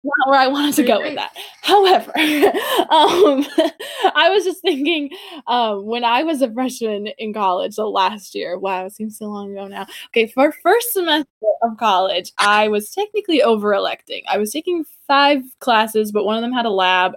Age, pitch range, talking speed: 10-29, 200-265 Hz, 190 wpm